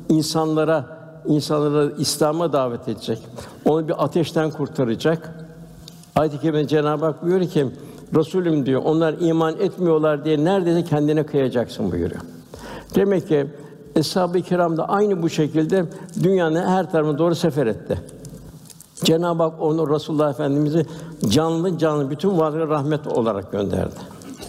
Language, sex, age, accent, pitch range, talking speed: Turkish, male, 60-79, native, 145-160 Hz, 125 wpm